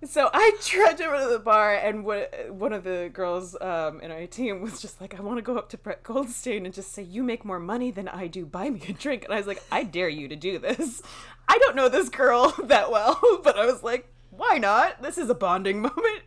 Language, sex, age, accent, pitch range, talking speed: English, female, 20-39, American, 150-215 Hz, 260 wpm